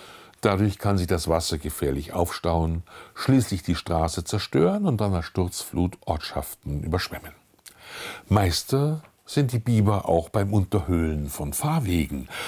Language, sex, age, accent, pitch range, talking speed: German, male, 60-79, German, 80-115 Hz, 125 wpm